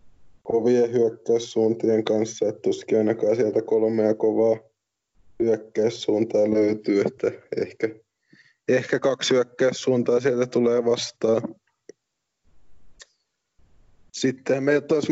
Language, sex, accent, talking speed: Finnish, male, native, 85 wpm